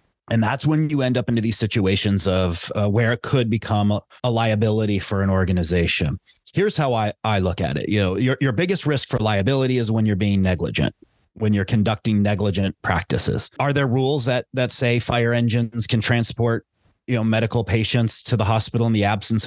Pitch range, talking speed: 105-120 Hz, 205 wpm